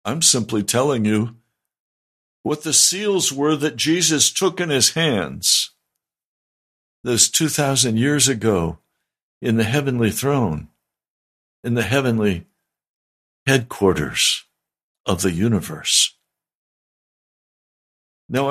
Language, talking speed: English, 95 wpm